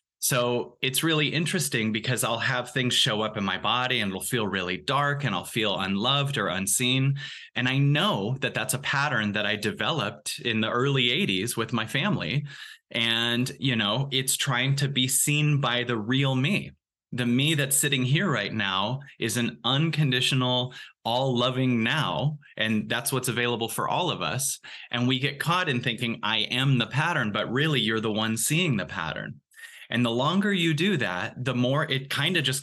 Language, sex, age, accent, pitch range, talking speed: English, male, 20-39, American, 115-145 Hz, 190 wpm